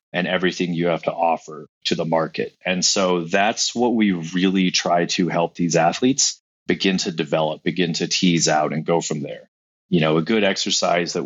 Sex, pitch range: male, 85-95 Hz